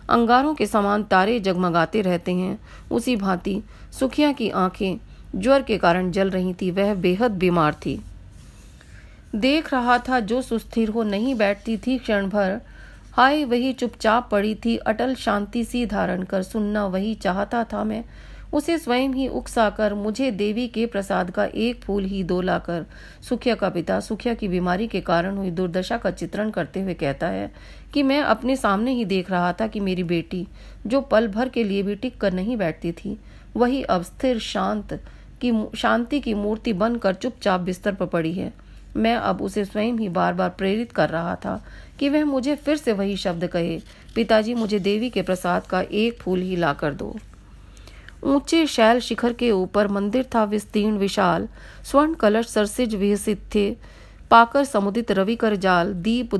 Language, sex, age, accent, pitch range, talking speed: Hindi, female, 40-59, native, 185-235 Hz, 170 wpm